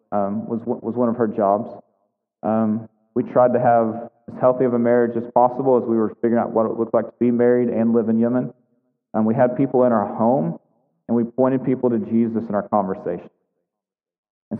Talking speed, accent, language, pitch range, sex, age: 220 wpm, American, English, 120-150 Hz, male, 40-59